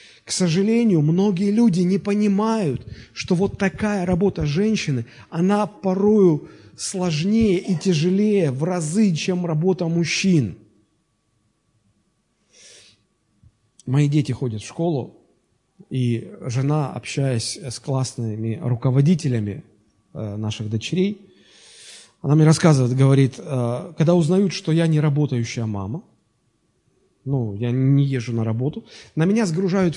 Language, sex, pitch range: Russian, male, 125-190 Hz